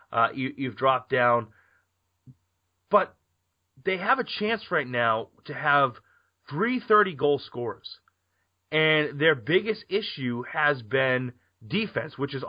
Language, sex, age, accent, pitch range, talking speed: English, male, 30-49, American, 115-155 Hz, 130 wpm